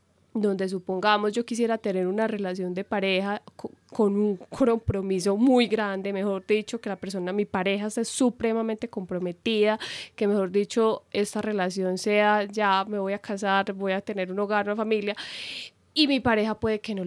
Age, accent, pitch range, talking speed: 10-29, Colombian, 195-230 Hz, 170 wpm